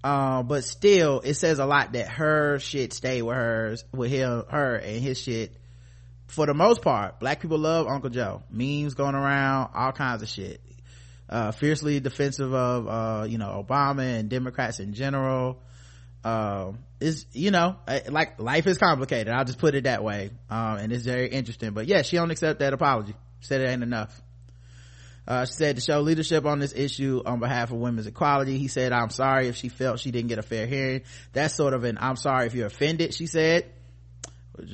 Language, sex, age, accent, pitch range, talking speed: English, male, 20-39, American, 115-140 Hz, 200 wpm